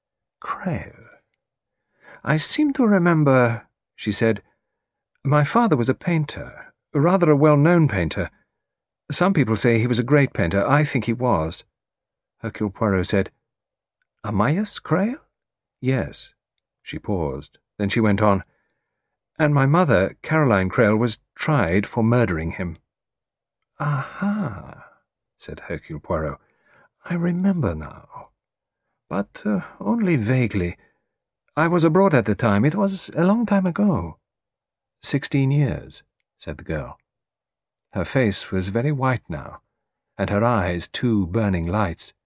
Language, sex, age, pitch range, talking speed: English, male, 50-69, 105-150 Hz, 130 wpm